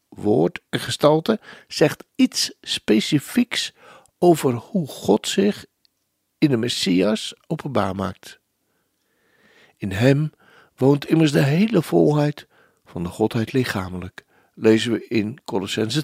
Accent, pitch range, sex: Dutch, 105-160 Hz, male